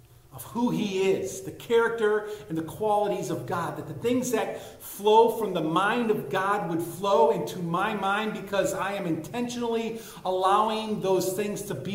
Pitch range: 155-220 Hz